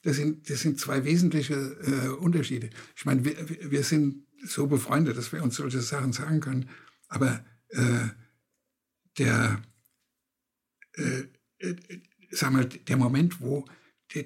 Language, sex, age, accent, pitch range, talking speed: German, male, 60-79, German, 125-160 Hz, 140 wpm